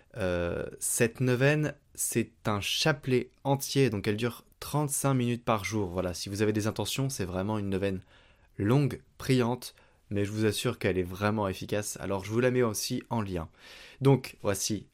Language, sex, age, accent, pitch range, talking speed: French, male, 20-39, French, 95-125 Hz, 175 wpm